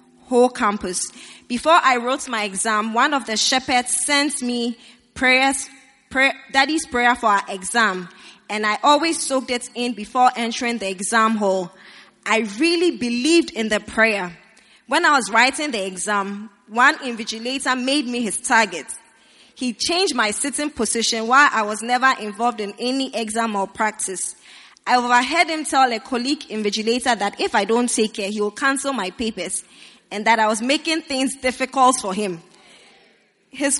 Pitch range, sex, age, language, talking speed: 220-280 Hz, female, 20-39, English, 160 wpm